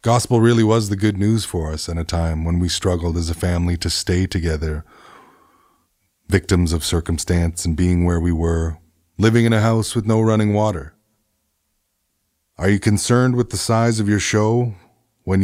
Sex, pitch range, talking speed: male, 85-105 Hz, 180 wpm